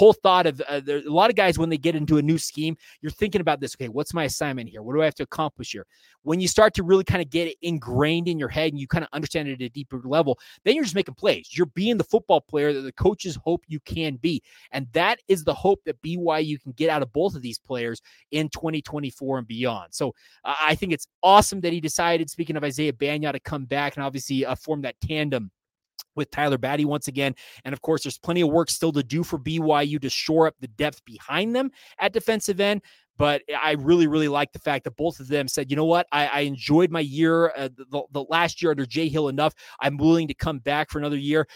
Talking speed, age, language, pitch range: 255 wpm, 20-39, English, 140-165 Hz